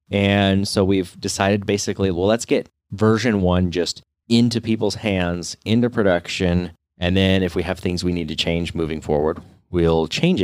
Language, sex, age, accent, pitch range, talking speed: English, male, 30-49, American, 85-115 Hz, 170 wpm